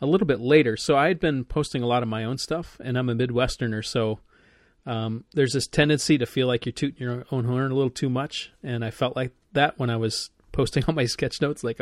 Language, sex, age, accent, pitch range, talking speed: English, male, 30-49, American, 115-135 Hz, 250 wpm